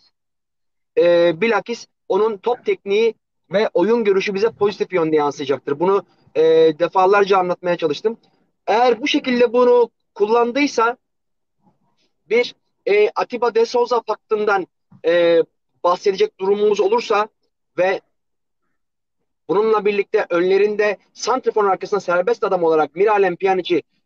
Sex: male